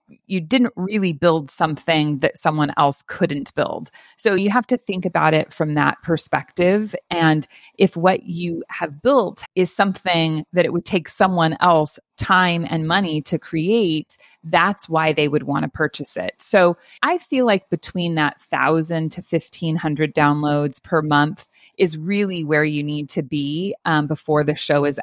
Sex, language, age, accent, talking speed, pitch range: female, English, 30-49, American, 170 wpm, 155-185 Hz